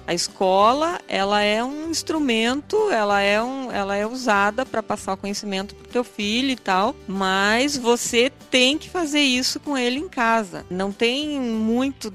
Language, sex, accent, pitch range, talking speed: Portuguese, female, Brazilian, 190-250 Hz, 175 wpm